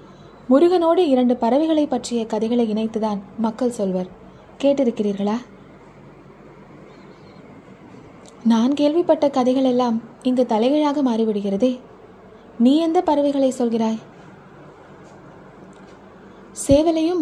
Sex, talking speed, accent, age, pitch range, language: female, 70 wpm, native, 20-39, 220-285 Hz, Tamil